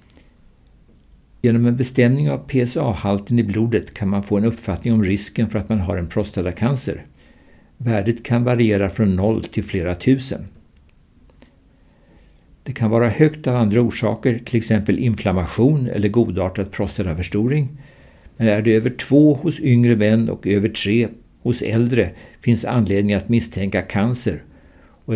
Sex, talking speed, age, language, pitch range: male, 145 wpm, 60-79, Swedish, 100-120 Hz